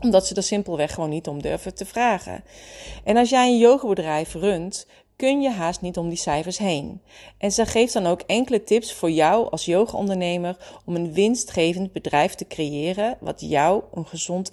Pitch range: 165-215 Hz